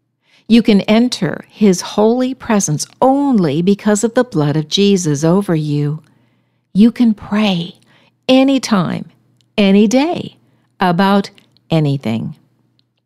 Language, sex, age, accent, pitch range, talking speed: English, female, 60-79, American, 165-230 Hz, 105 wpm